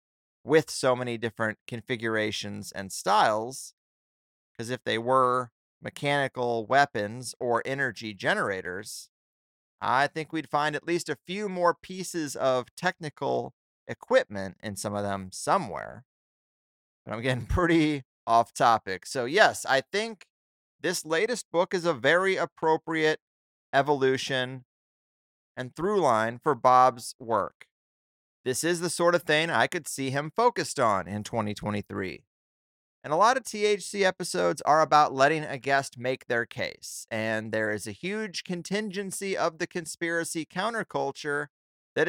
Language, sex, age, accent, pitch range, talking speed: English, male, 30-49, American, 115-165 Hz, 140 wpm